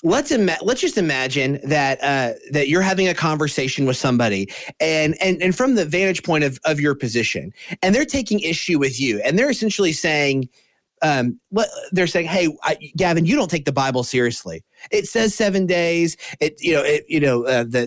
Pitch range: 135-180 Hz